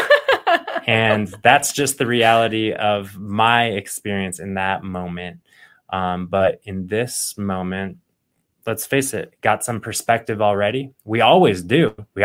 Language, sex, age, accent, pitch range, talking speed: English, male, 20-39, American, 95-120 Hz, 130 wpm